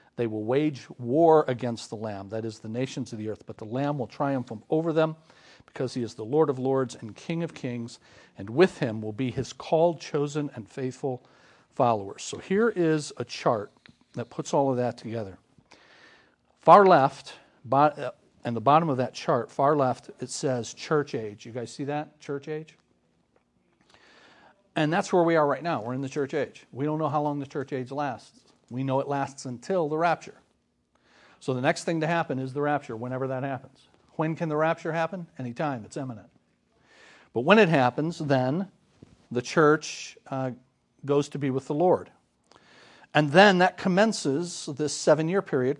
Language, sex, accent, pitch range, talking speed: English, male, American, 125-155 Hz, 185 wpm